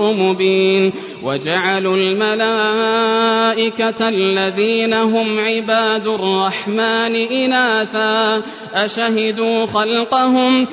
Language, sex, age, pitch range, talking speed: Arabic, male, 20-39, 190-220 Hz, 55 wpm